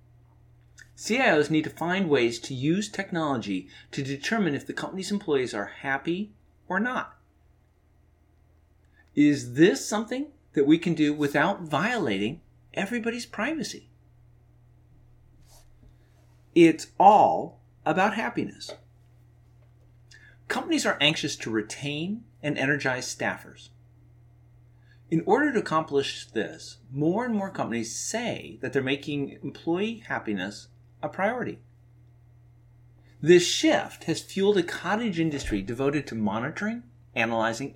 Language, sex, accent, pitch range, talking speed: English, male, American, 120-165 Hz, 110 wpm